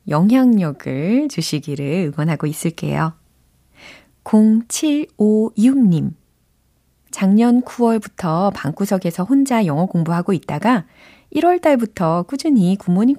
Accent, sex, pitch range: native, female, 160-230 Hz